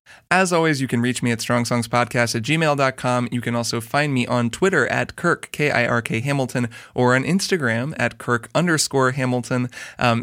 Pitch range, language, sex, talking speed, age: 120-145 Hz, English, male, 170 wpm, 20-39